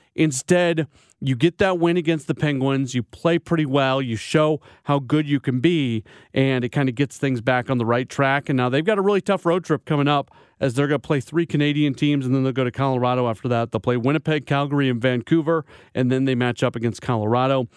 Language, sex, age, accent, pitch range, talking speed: English, male, 40-59, American, 125-155 Hz, 235 wpm